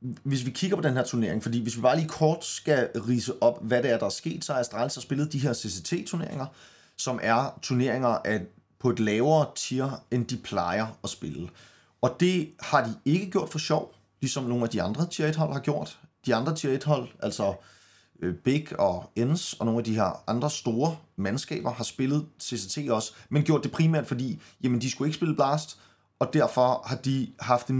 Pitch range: 115-150 Hz